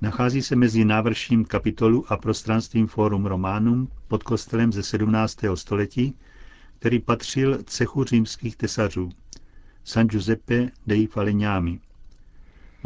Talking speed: 110 wpm